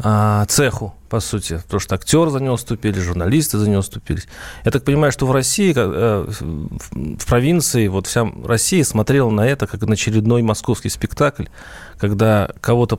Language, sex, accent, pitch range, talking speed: Russian, male, native, 110-145 Hz, 155 wpm